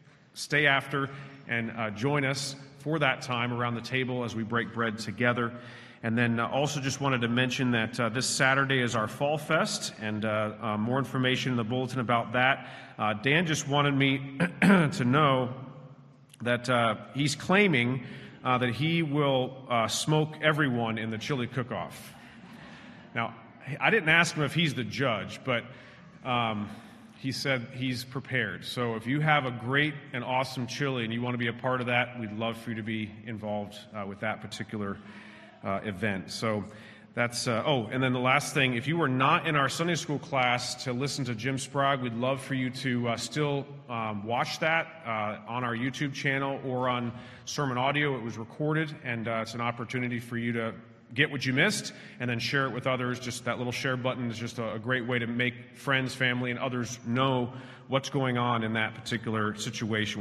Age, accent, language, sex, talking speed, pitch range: 40-59, American, English, male, 195 wpm, 115-135 Hz